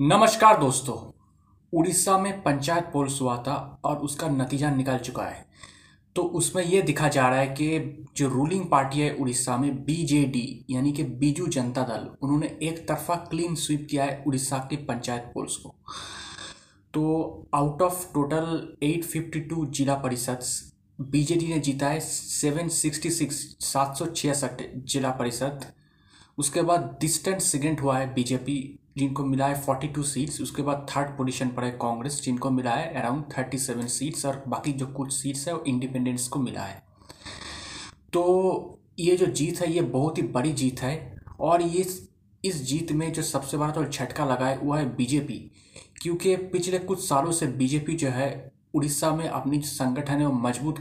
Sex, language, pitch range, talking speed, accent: male, Hindi, 130-155 Hz, 160 wpm, native